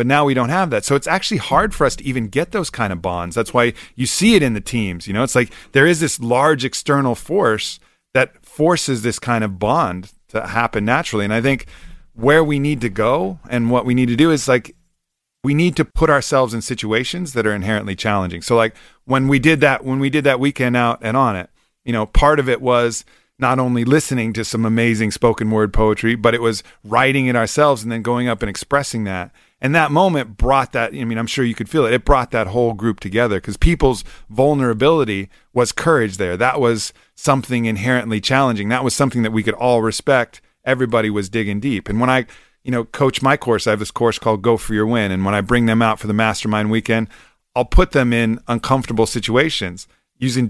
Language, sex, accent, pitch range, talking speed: English, male, American, 110-135 Hz, 230 wpm